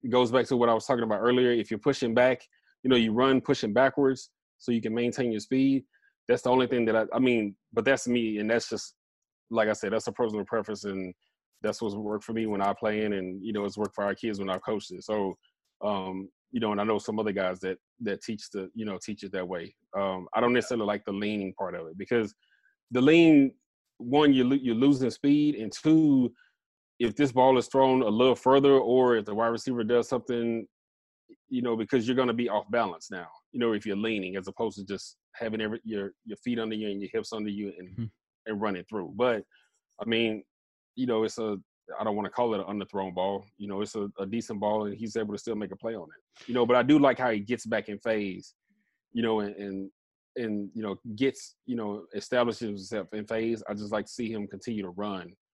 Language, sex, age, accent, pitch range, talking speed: English, male, 20-39, American, 100-125 Hz, 245 wpm